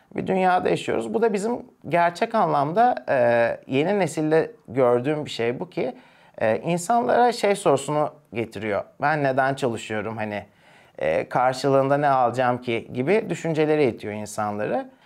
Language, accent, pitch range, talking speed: Turkish, native, 130-170 Hz, 125 wpm